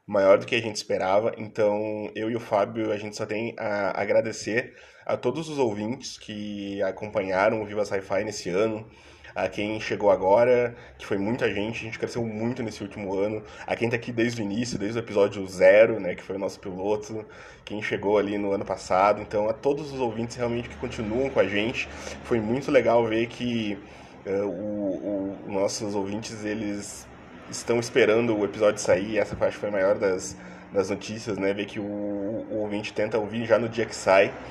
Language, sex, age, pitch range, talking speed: Portuguese, male, 20-39, 100-115 Hz, 200 wpm